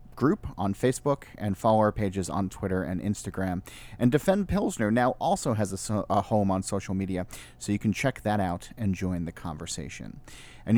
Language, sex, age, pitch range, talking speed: English, male, 30-49, 95-120 Hz, 190 wpm